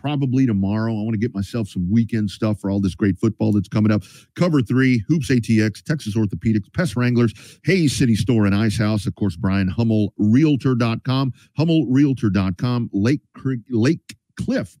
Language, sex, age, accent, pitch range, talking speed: English, male, 40-59, American, 105-130 Hz, 170 wpm